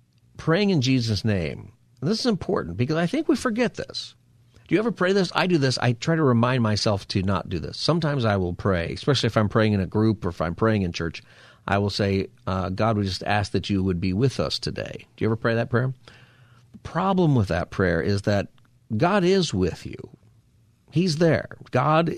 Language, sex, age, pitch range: English, male, 50-69, 105-135 Hz